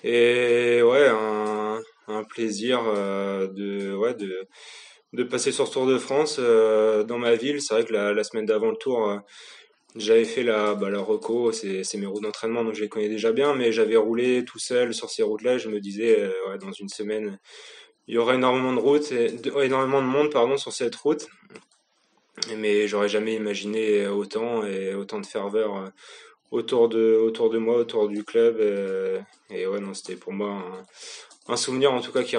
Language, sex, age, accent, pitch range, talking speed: French, male, 20-39, French, 105-150 Hz, 195 wpm